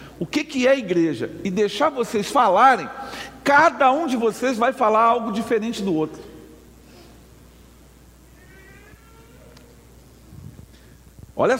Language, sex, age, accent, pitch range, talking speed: Portuguese, male, 50-69, Brazilian, 170-235 Hz, 110 wpm